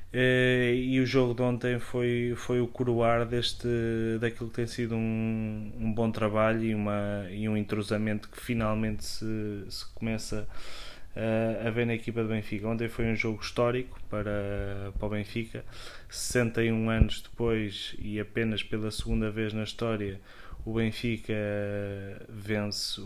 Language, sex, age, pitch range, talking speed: Portuguese, male, 20-39, 105-115 Hz, 145 wpm